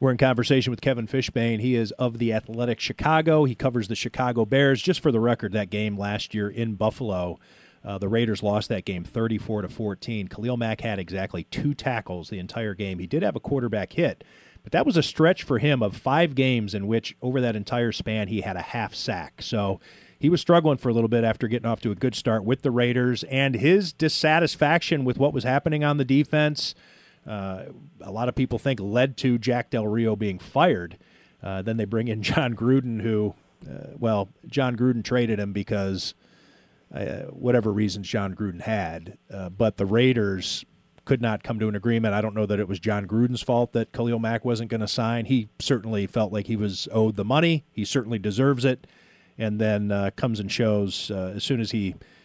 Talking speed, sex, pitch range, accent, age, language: 210 wpm, male, 105-130 Hz, American, 40-59, English